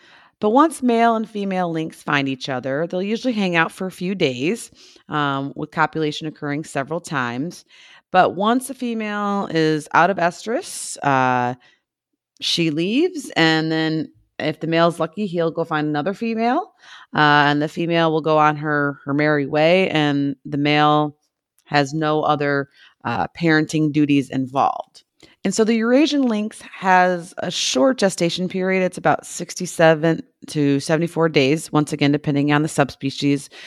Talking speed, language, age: 155 wpm, English, 30-49